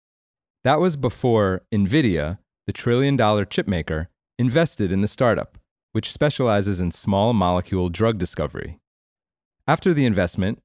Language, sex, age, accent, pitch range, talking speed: English, male, 30-49, American, 95-125 Hz, 115 wpm